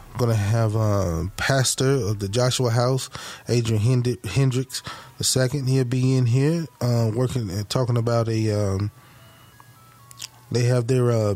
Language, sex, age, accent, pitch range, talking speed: English, male, 20-39, American, 110-130 Hz, 155 wpm